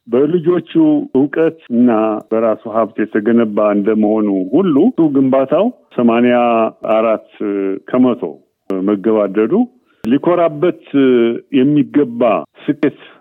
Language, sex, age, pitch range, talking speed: Amharic, male, 50-69, 115-160 Hz, 65 wpm